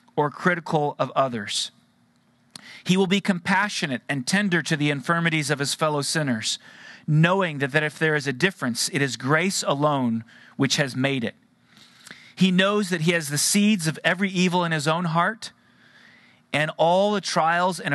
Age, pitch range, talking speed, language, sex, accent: 40-59, 130-175 Hz, 175 wpm, English, male, American